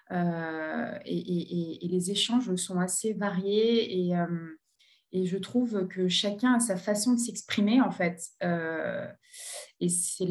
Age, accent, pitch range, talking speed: 20-39, French, 180-215 Hz, 150 wpm